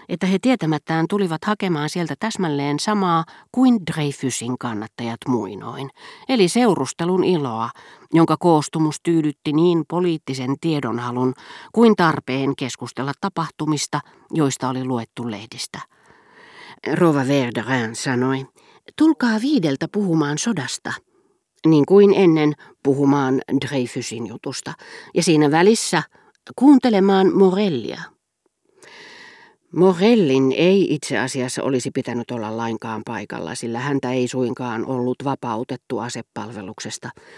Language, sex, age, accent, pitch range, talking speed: Finnish, female, 40-59, native, 130-195 Hz, 100 wpm